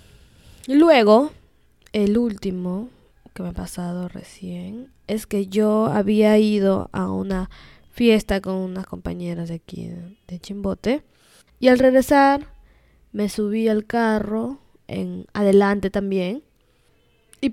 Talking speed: 120 wpm